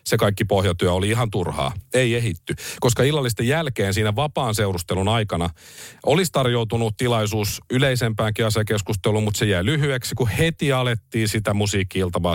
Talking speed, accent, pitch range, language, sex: 140 wpm, native, 95-130 Hz, Finnish, male